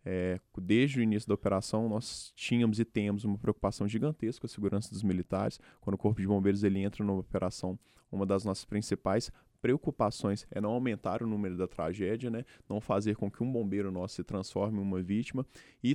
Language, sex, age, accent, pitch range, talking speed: Portuguese, male, 20-39, Brazilian, 100-120 Hz, 195 wpm